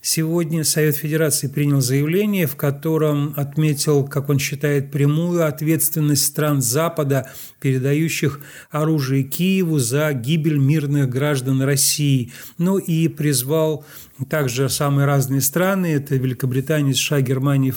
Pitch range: 140-160 Hz